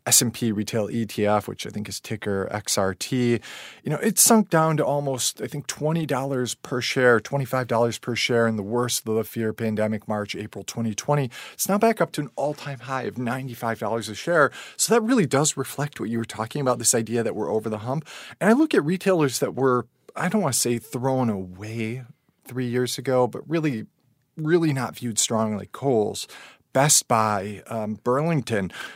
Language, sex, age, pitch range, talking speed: English, male, 40-59, 115-140 Hz, 190 wpm